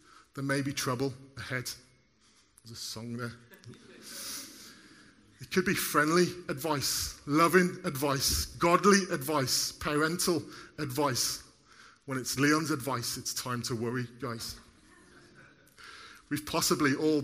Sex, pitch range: male, 130-155 Hz